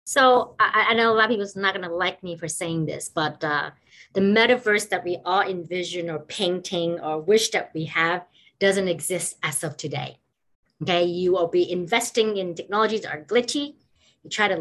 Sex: female